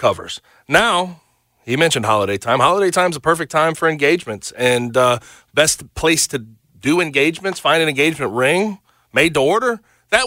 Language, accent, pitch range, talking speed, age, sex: English, American, 125-170 Hz, 165 wpm, 40-59, male